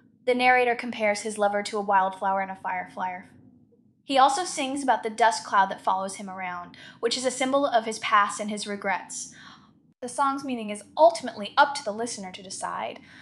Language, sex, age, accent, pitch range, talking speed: English, female, 10-29, American, 205-255 Hz, 195 wpm